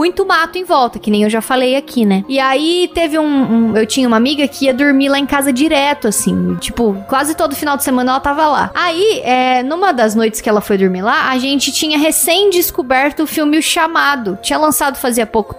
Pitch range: 240-335 Hz